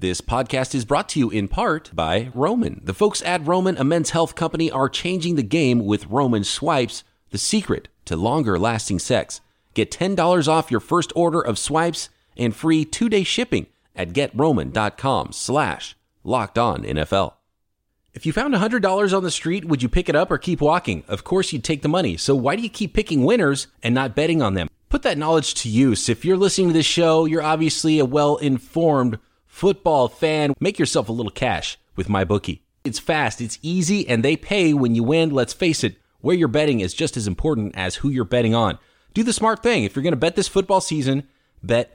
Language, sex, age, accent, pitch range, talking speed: English, male, 30-49, American, 115-170 Hz, 205 wpm